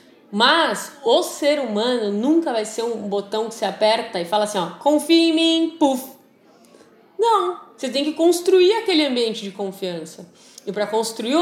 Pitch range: 200-280 Hz